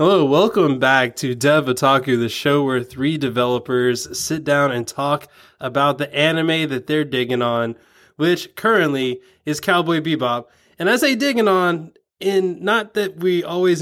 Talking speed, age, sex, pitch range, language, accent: 160 wpm, 20-39, male, 130-165 Hz, English, American